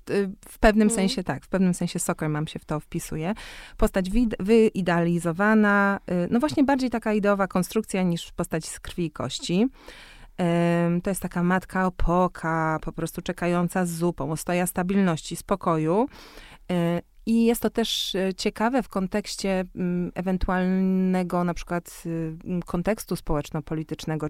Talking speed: 130 wpm